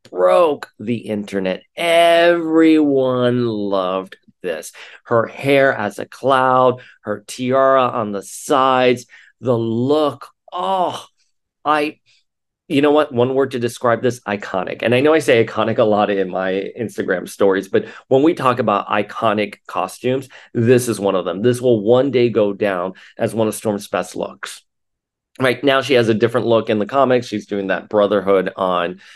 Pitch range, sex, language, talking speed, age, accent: 105-130 Hz, male, English, 165 wpm, 40-59, American